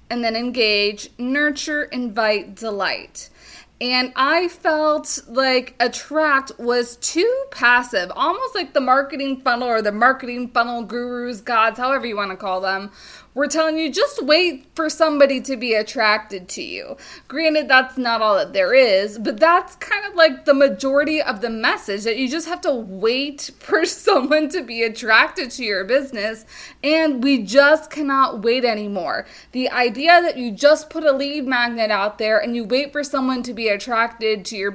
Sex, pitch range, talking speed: female, 225-290 Hz, 175 wpm